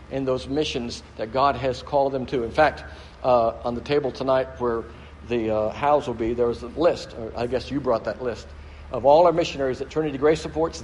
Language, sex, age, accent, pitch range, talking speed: English, male, 60-79, American, 130-170 Hz, 220 wpm